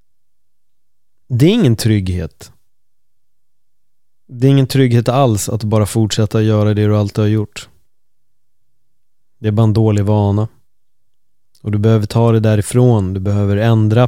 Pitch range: 100-120 Hz